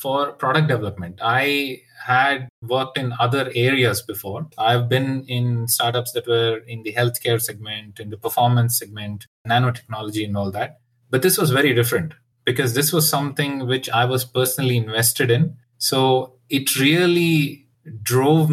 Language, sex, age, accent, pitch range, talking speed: English, male, 20-39, Indian, 120-145 Hz, 150 wpm